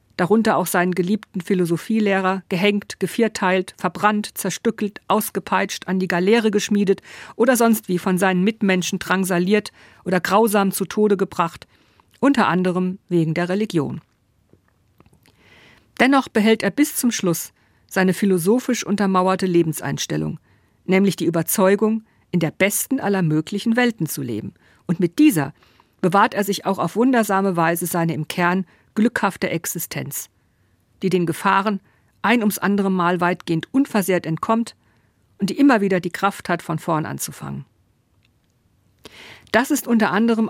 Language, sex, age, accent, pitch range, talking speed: German, female, 50-69, German, 165-210 Hz, 135 wpm